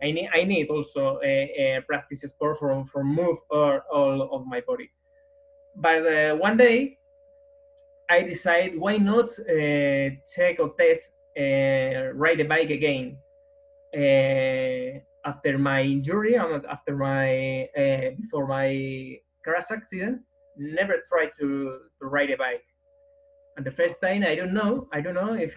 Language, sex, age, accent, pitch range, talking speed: English, male, 20-39, Spanish, 145-240 Hz, 150 wpm